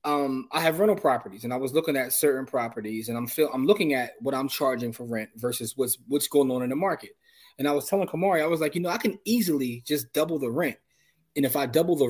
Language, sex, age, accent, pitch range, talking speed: English, male, 20-39, American, 130-165 Hz, 265 wpm